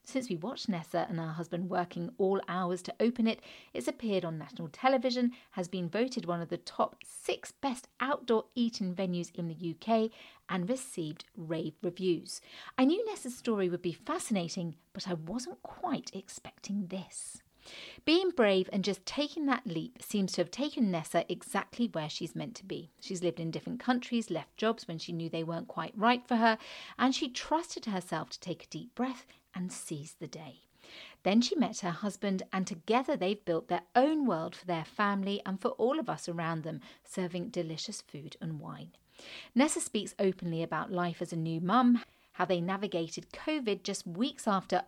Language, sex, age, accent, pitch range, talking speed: English, female, 40-59, British, 170-235 Hz, 185 wpm